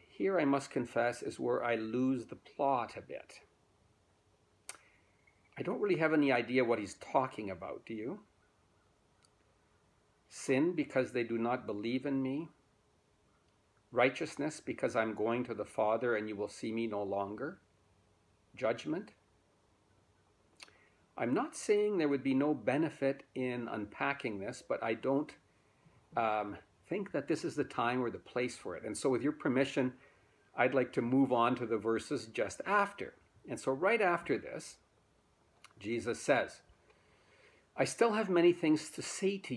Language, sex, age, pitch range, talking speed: English, male, 50-69, 105-140 Hz, 155 wpm